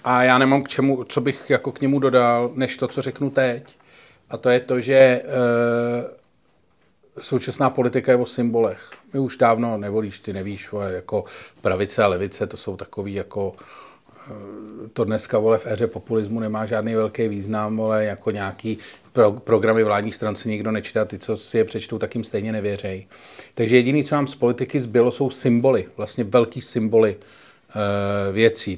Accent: native